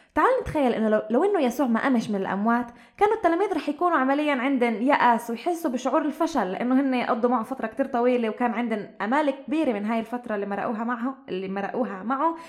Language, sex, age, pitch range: Arabic, female, 20-39, 220-290 Hz